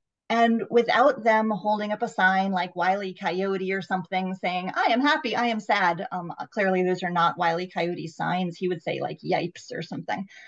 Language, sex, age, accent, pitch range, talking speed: English, female, 30-49, American, 190-250 Hz, 195 wpm